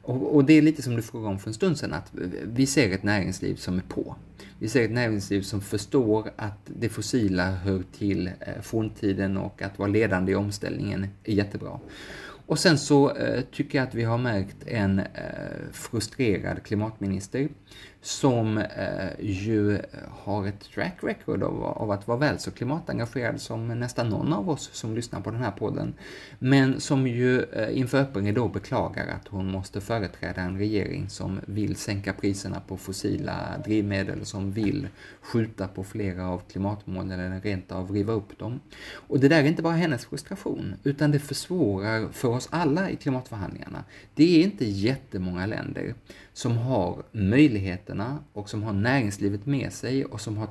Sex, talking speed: male, 170 wpm